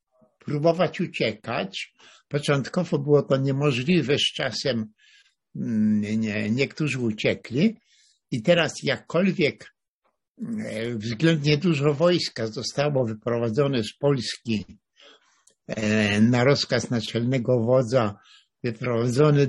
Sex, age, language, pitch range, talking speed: male, 60-79, Polish, 115-155 Hz, 75 wpm